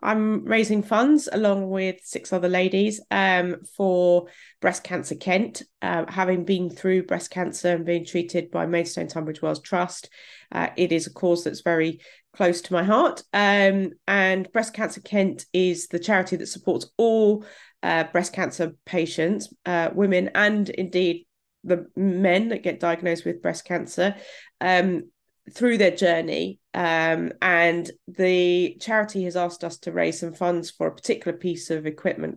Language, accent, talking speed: English, British, 160 wpm